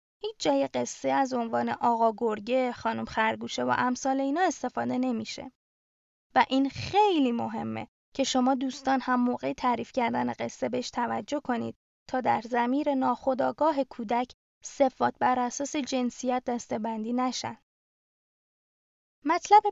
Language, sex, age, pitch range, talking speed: Persian, female, 20-39, 235-280 Hz, 125 wpm